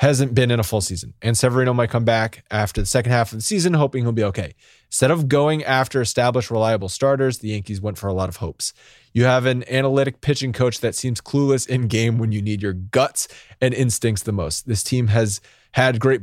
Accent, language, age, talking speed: American, English, 20-39, 230 wpm